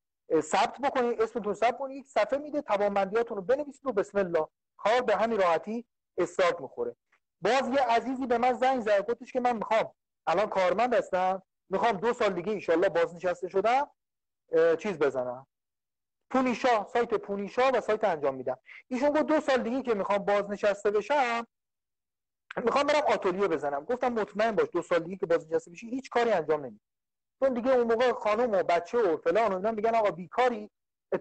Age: 40-59